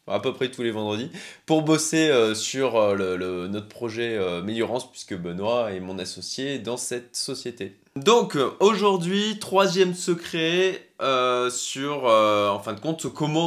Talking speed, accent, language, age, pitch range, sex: 165 wpm, French, French, 20-39, 110-155 Hz, male